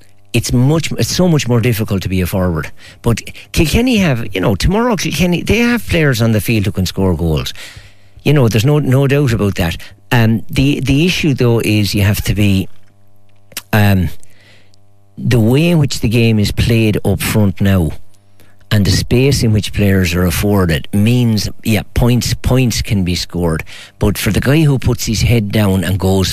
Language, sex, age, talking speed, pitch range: English, male, 50-69, 195 wpm, 100-120 Hz